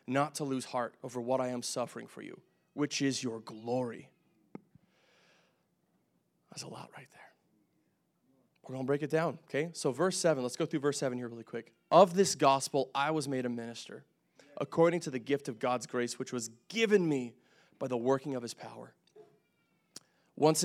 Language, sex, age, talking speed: English, male, 20-39, 185 wpm